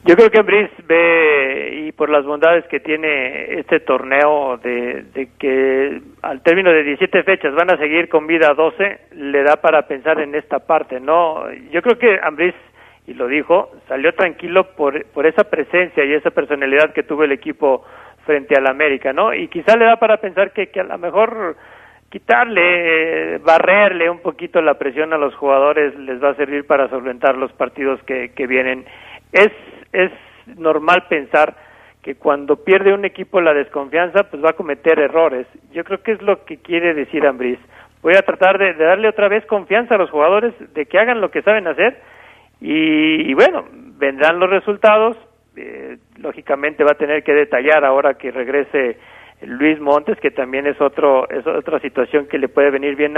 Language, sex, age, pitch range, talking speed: Spanish, male, 40-59, 140-185 Hz, 185 wpm